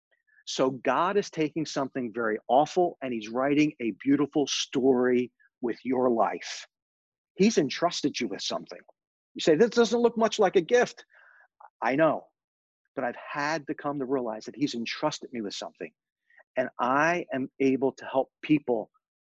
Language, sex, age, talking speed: English, male, 40-59, 160 wpm